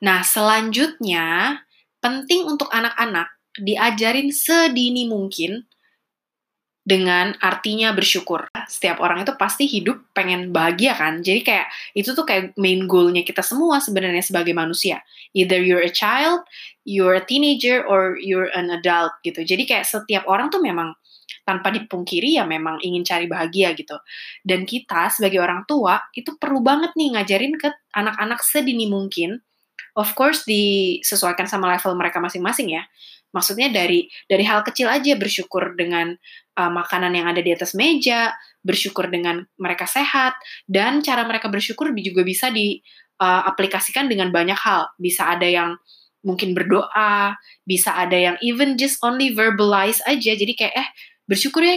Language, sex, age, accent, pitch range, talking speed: Indonesian, female, 20-39, native, 180-250 Hz, 145 wpm